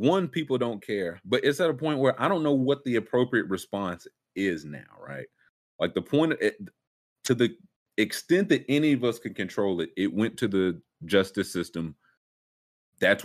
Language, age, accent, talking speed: English, 30-49, American, 180 wpm